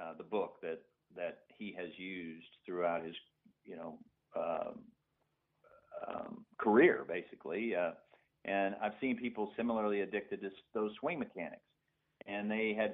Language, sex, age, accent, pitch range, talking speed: English, male, 50-69, American, 95-115 Hz, 145 wpm